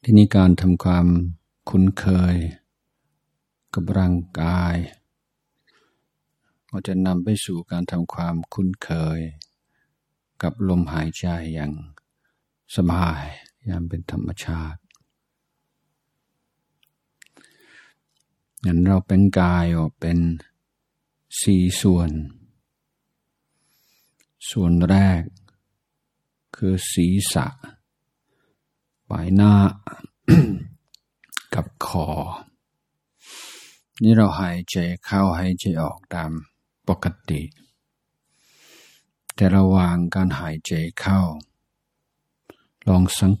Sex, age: male, 60-79